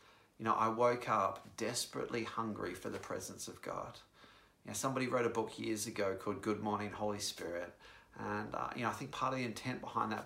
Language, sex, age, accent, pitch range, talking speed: English, male, 40-59, Australian, 105-130 Hz, 215 wpm